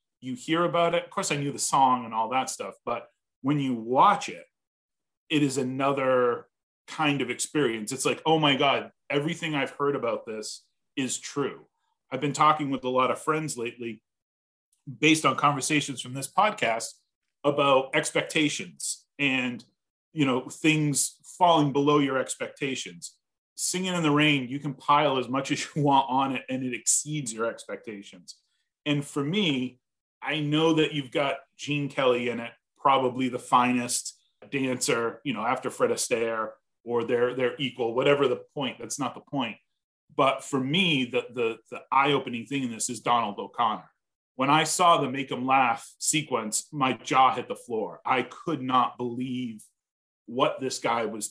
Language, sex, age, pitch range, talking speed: English, male, 30-49, 125-150 Hz, 170 wpm